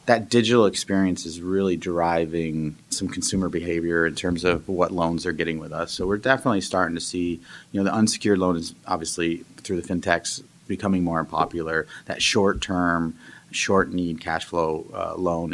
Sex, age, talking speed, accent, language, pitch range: male, 30-49, 170 wpm, American, English, 85-95 Hz